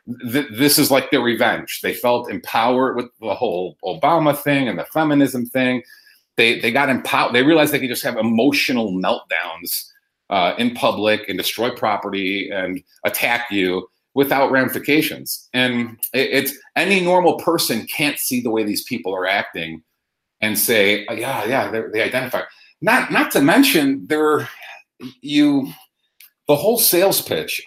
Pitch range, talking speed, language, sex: 115-180 Hz, 155 wpm, English, male